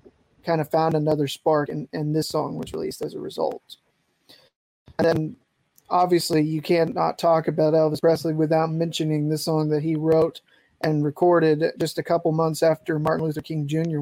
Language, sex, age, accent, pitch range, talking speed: English, male, 20-39, American, 155-175 Hz, 185 wpm